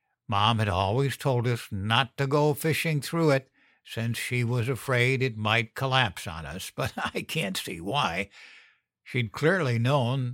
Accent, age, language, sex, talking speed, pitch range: American, 60-79, English, male, 165 wpm, 110-140 Hz